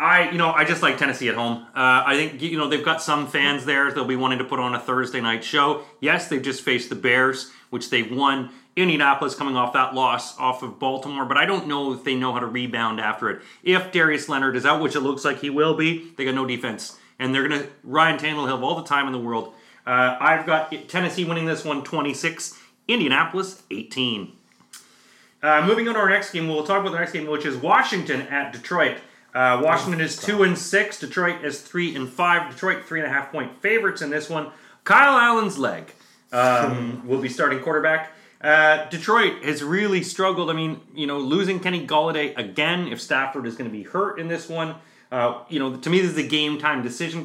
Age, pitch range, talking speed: 30-49, 130-165 Hz, 220 wpm